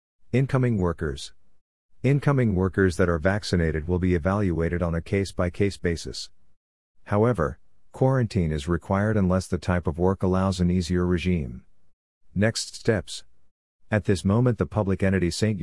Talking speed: 140 wpm